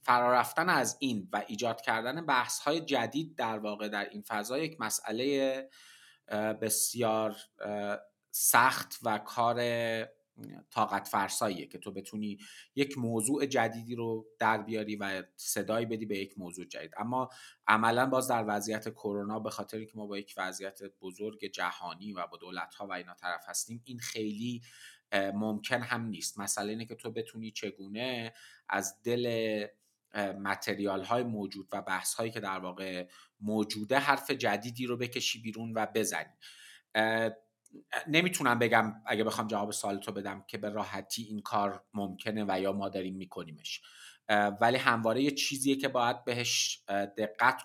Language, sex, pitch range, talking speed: Persian, male, 100-115 Hz, 150 wpm